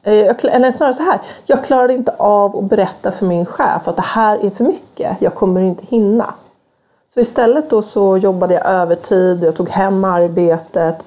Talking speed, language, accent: 185 wpm, Swedish, native